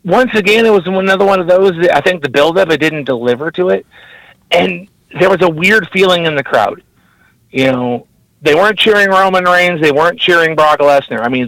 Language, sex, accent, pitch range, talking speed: English, male, American, 125-160 Hz, 215 wpm